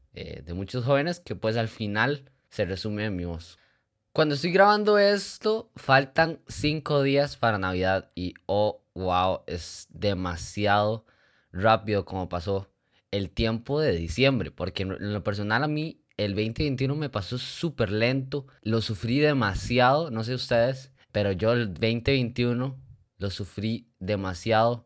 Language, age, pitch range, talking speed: Spanish, 20-39, 100-135 Hz, 140 wpm